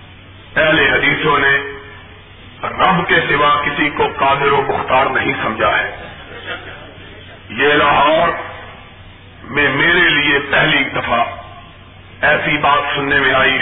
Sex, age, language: male, 50-69, Urdu